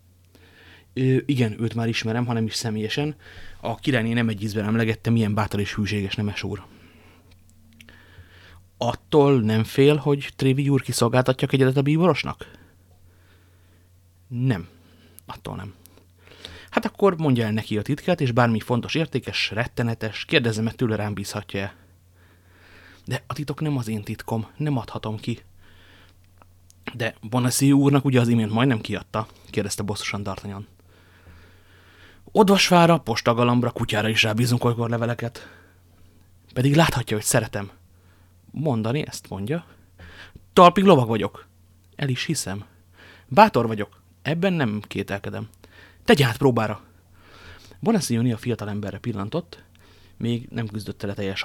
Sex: male